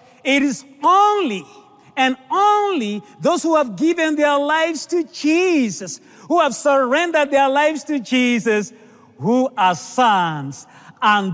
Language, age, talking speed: English, 40-59, 125 wpm